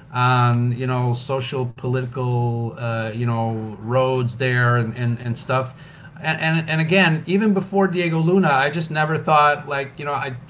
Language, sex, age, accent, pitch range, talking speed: English, male, 40-59, American, 120-155 Hz, 170 wpm